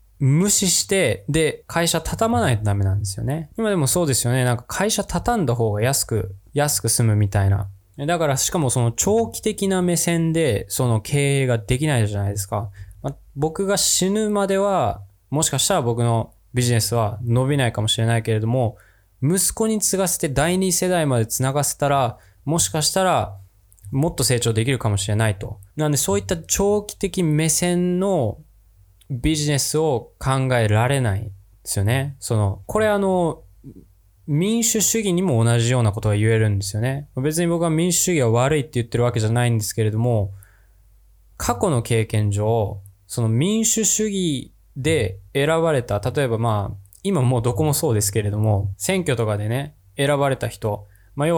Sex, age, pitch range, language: male, 20-39, 105-160 Hz, Japanese